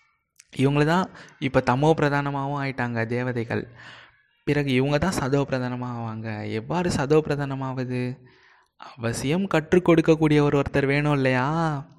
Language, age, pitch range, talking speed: Tamil, 20-39, 120-155 Hz, 85 wpm